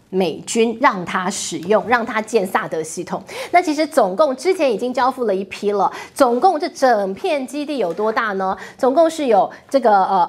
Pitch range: 200-290 Hz